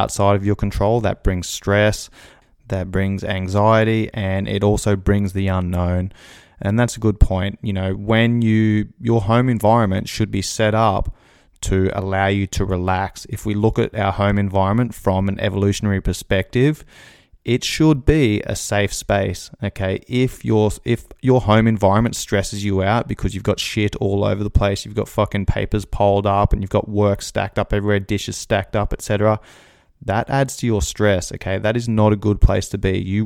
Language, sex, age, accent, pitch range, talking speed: English, male, 20-39, Australian, 95-110 Hz, 190 wpm